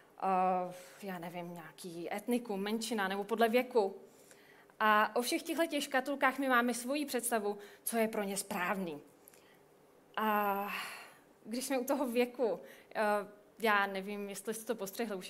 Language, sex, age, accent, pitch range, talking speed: Czech, female, 20-39, native, 205-260 Hz, 155 wpm